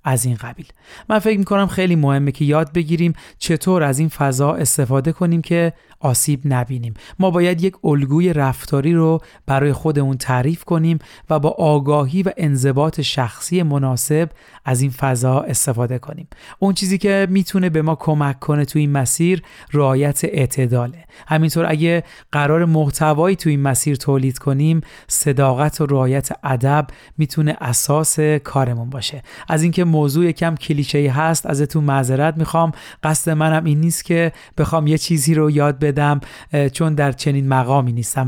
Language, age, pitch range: Persian, 40-59, 135-170 Hz